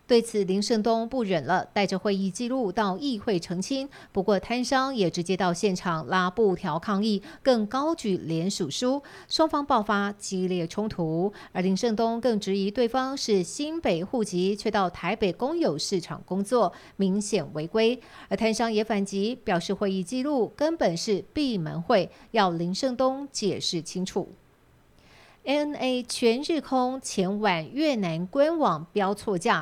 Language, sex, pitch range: Chinese, female, 185-235 Hz